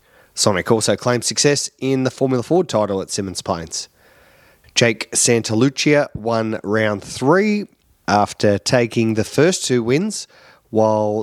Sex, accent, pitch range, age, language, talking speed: male, Australian, 100-130 Hz, 30-49, English, 130 wpm